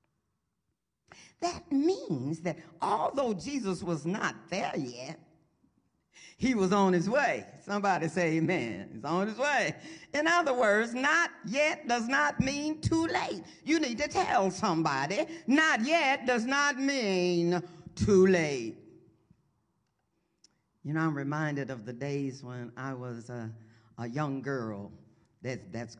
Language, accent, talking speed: English, American, 135 wpm